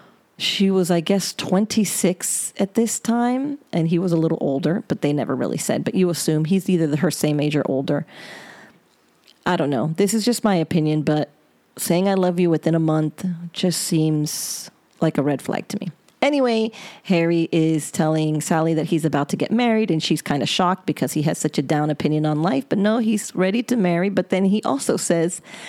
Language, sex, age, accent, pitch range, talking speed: English, female, 30-49, American, 155-195 Hz, 210 wpm